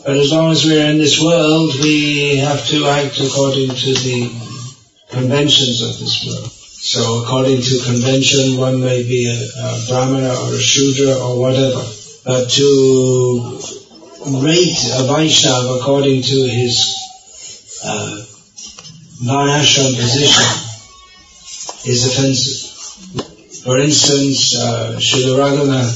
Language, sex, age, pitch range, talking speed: English, male, 50-69, 125-150 Hz, 120 wpm